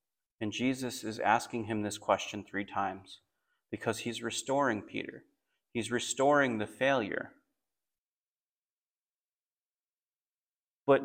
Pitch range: 115-150 Hz